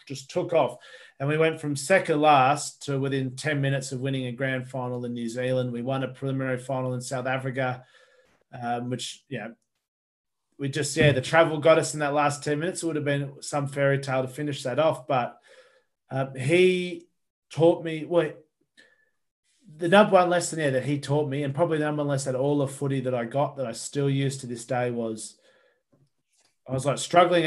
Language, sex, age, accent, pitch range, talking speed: English, male, 30-49, Australian, 135-160 Hz, 210 wpm